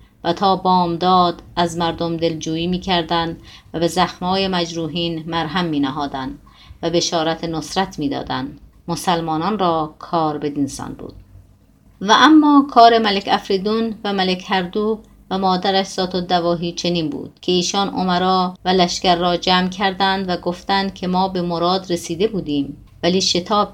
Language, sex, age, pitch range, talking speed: Persian, female, 30-49, 170-195 Hz, 140 wpm